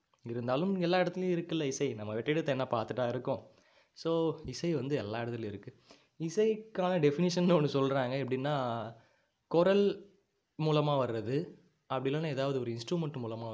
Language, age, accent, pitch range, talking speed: Tamil, 20-39, native, 120-160 Hz, 135 wpm